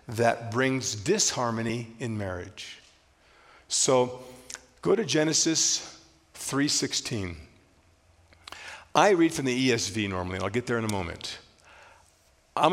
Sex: male